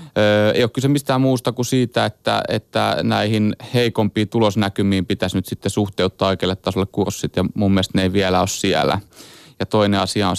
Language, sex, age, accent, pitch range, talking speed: Finnish, male, 30-49, native, 95-110 Hz, 175 wpm